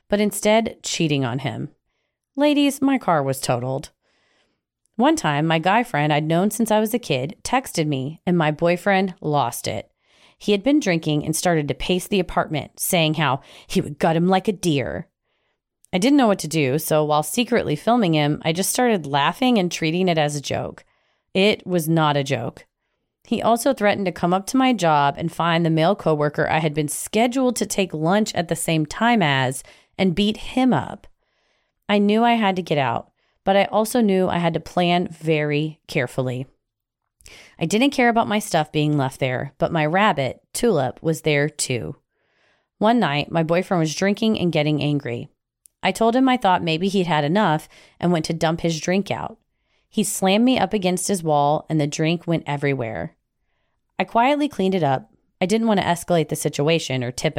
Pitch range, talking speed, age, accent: 150-205 Hz, 195 wpm, 30-49, American